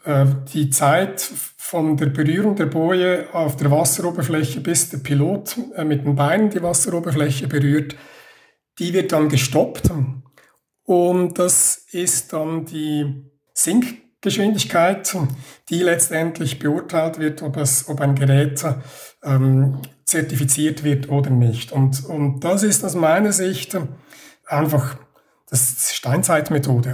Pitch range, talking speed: 135-170 Hz, 120 wpm